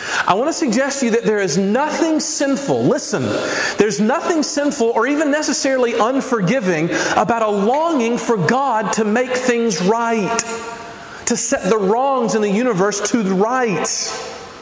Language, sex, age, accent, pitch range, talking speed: English, male, 40-59, American, 180-250 Hz, 155 wpm